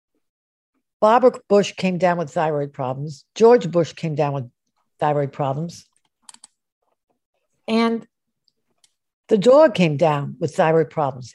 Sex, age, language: female, 60-79, English